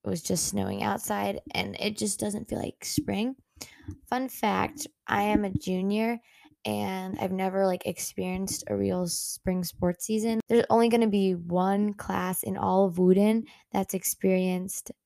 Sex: female